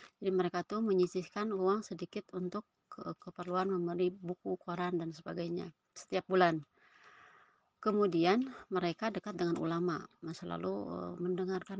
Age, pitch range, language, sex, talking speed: 30-49, 175-210 Hz, Indonesian, female, 110 wpm